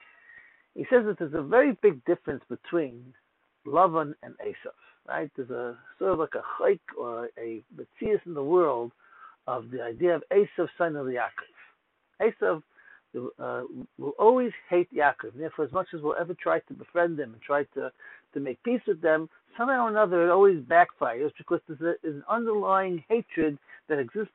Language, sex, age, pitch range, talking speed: English, male, 60-79, 155-205 Hz, 185 wpm